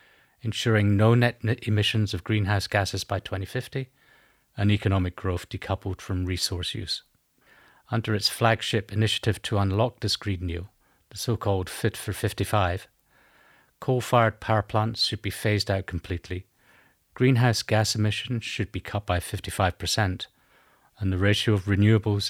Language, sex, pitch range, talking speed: Polish, male, 95-110 Hz, 135 wpm